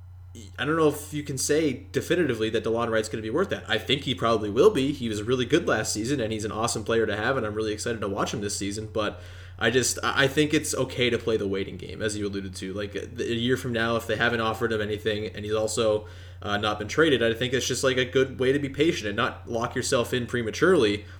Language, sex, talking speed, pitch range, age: English, male, 270 wpm, 100-120 Hz, 20-39